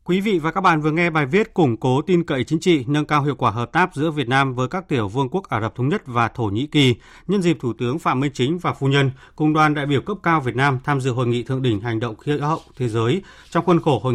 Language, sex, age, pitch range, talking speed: Vietnamese, male, 30-49, 120-160 Hz, 300 wpm